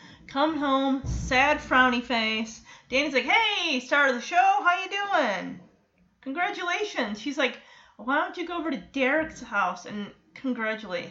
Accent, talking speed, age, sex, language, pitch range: American, 150 wpm, 30-49, female, English, 220-310 Hz